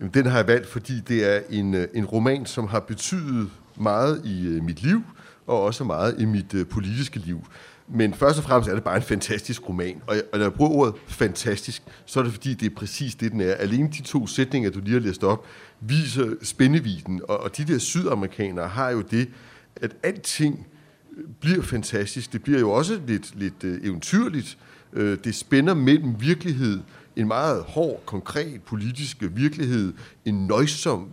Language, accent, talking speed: Danish, native, 175 wpm